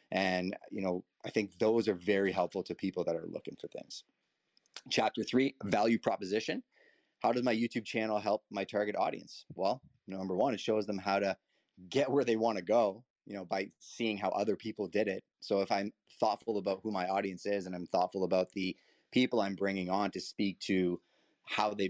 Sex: male